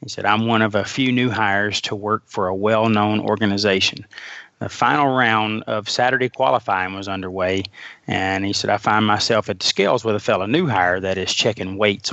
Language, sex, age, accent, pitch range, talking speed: English, male, 30-49, American, 105-120 Hz, 205 wpm